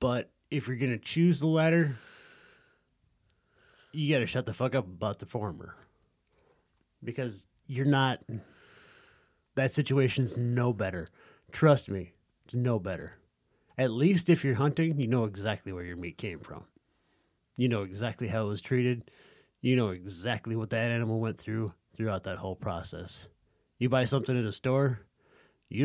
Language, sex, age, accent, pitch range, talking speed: English, male, 30-49, American, 105-135 Hz, 160 wpm